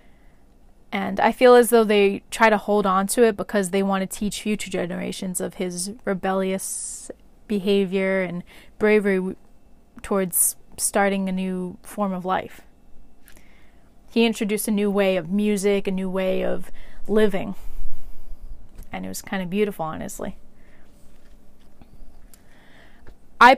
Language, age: English, 20-39